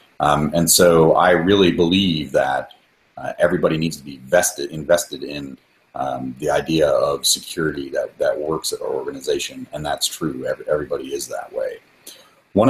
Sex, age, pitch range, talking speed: male, 40-59, 75-90 Hz, 160 wpm